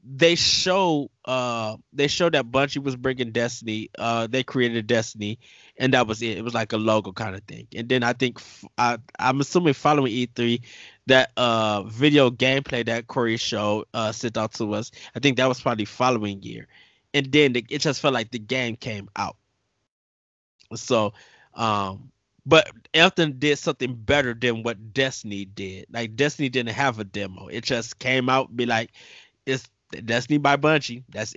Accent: American